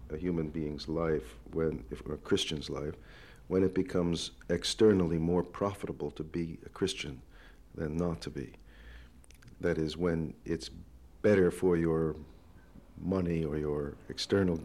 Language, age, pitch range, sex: English, 50-69, 80-95 Hz, male